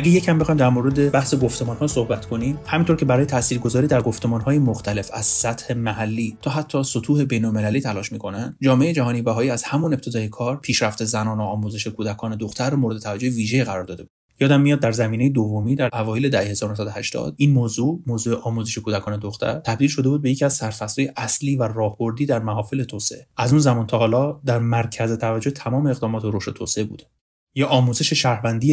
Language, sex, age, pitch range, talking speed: Persian, male, 30-49, 110-130 Hz, 190 wpm